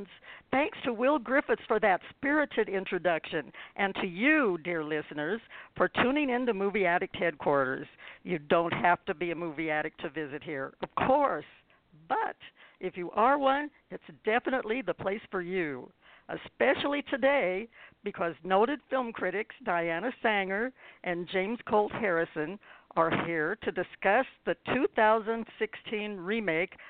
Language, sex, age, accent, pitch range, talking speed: English, female, 60-79, American, 165-210 Hz, 140 wpm